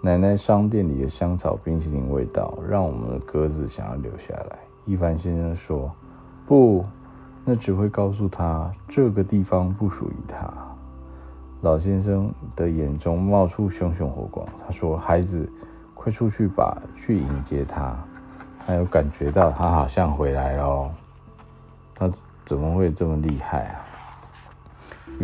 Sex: male